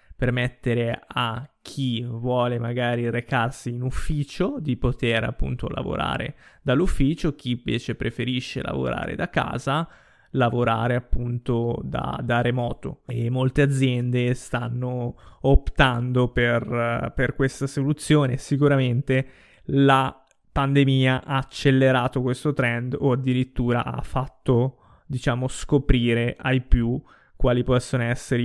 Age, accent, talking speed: 20-39, native, 110 wpm